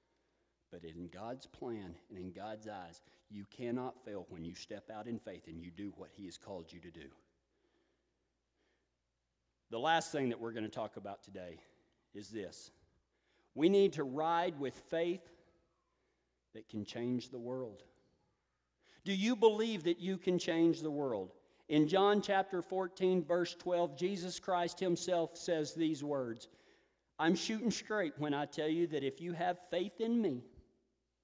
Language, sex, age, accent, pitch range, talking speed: English, male, 40-59, American, 130-200 Hz, 165 wpm